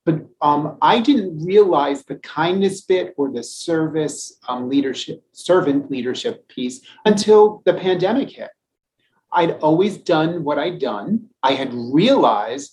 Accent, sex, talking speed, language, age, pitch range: American, male, 135 wpm, English, 30-49, 135-205 Hz